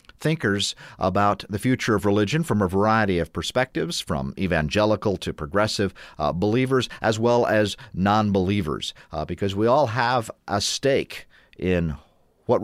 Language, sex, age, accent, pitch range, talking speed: English, male, 50-69, American, 95-140 Hz, 140 wpm